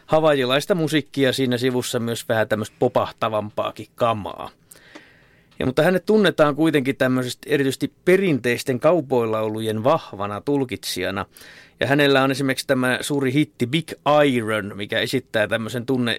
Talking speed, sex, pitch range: 120 wpm, male, 115-145 Hz